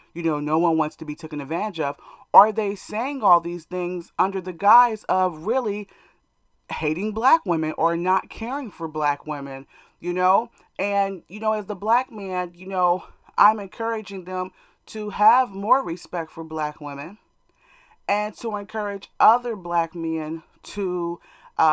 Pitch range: 165-210 Hz